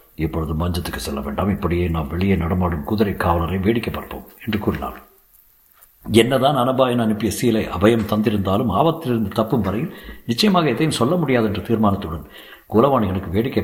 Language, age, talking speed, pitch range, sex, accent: Tamil, 60-79, 135 wpm, 90-130 Hz, male, native